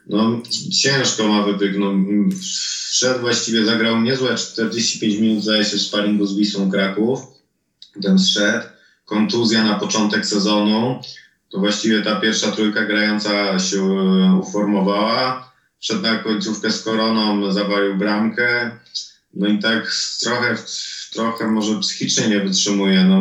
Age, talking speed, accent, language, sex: 20-39, 125 wpm, native, Polish, male